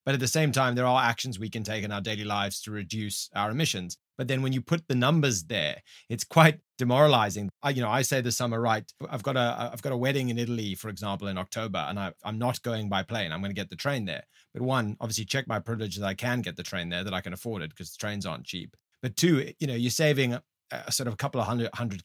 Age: 30-49